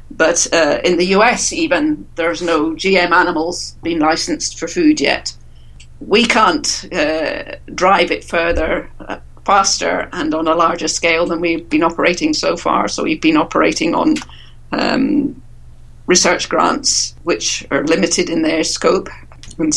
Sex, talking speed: female, 150 wpm